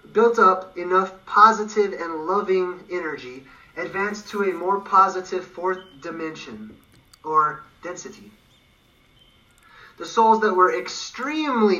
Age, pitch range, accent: 30-49, 160-215 Hz, American